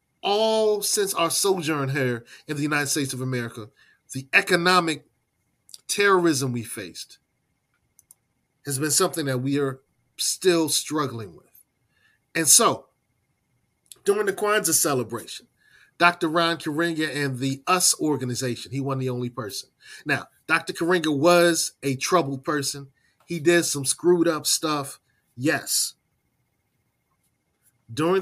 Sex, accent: male, American